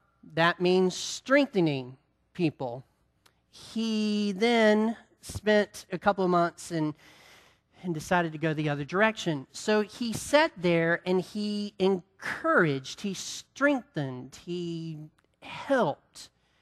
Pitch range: 180-215 Hz